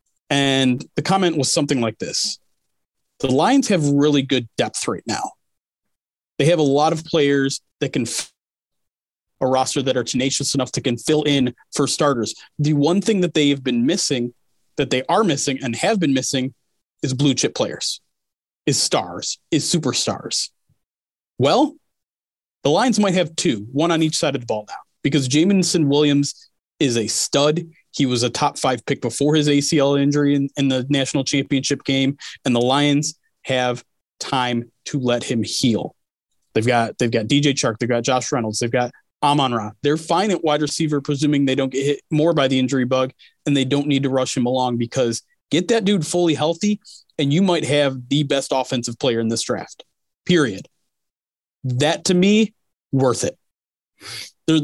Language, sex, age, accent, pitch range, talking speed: English, male, 30-49, American, 125-155 Hz, 180 wpm